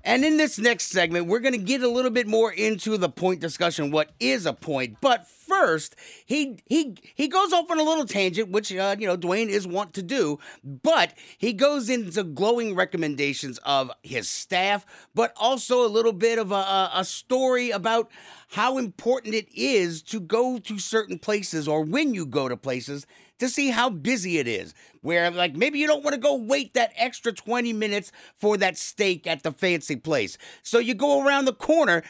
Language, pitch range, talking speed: English, 155-240 Hz, 200 wpm